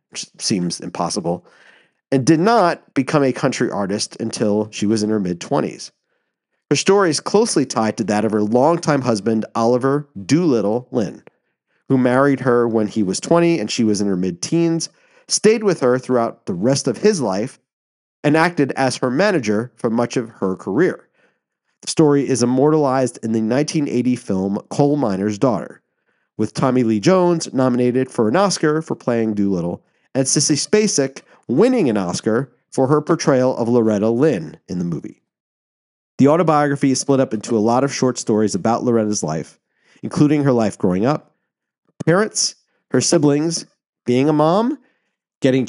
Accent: American